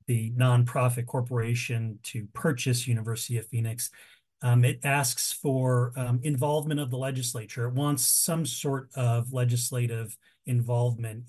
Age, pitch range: 40-59, 120-145 Hz